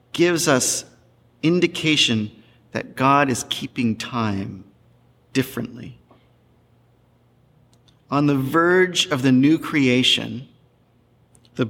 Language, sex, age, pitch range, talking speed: English, male, 40-59, 120-155 Hz, 85 wpm